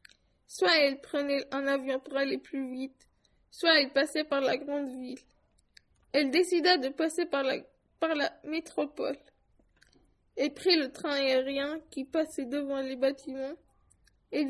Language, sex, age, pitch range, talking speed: French, female, 20-39, 275-310 Hz, 150 wpm